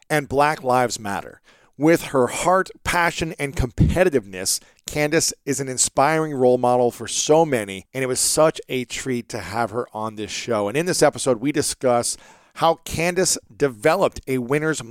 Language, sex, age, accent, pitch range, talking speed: English, male, 40-59, American, 125-155 Hz, 170 wpm